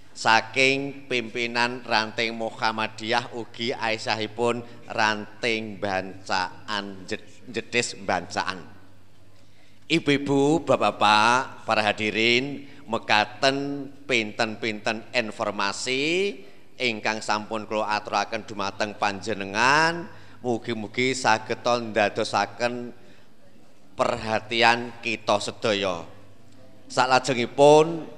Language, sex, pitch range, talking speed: Indonesian, male, 110-135 Hz, 65 wpm